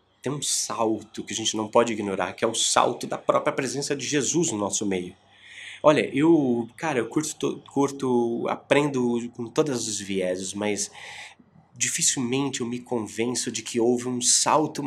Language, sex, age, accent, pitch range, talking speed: Portuguese, male, 20-39, Brazilian, 110-135 Hz, 170 wpm